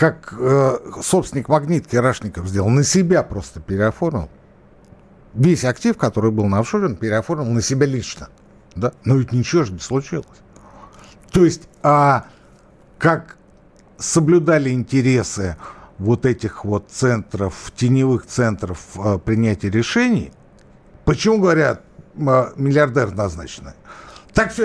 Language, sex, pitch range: Russian, male, 105-165 Hz